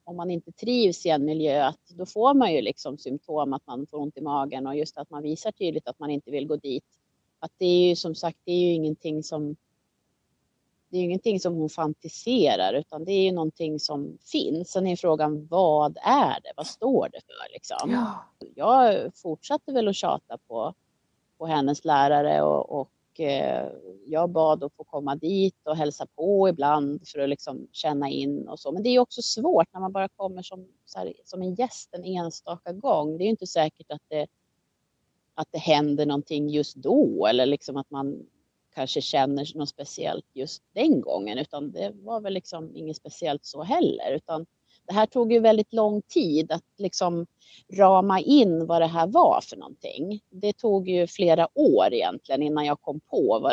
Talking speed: 200 wpm